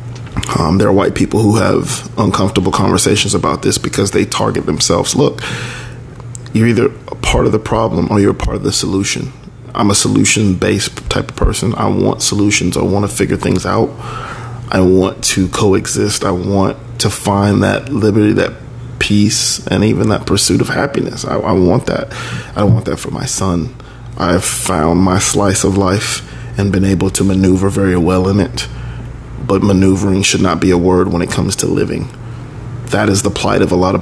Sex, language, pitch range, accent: male, English, 95-120 Hz, American